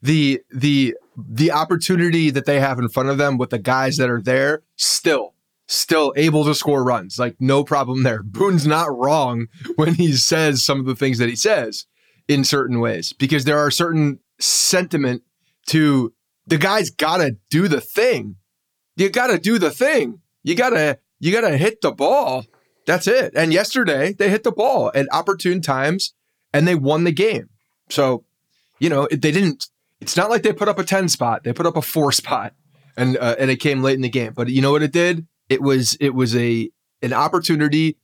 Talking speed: 195 wpm